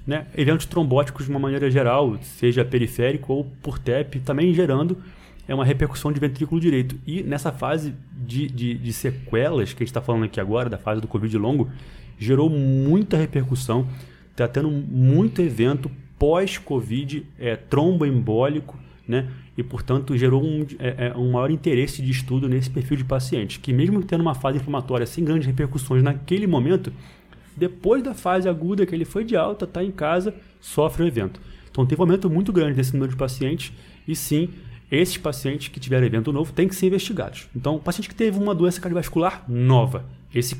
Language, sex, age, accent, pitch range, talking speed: Portuguese, male, 20-39, Brazilian, 125-165 Hz, 180 wpm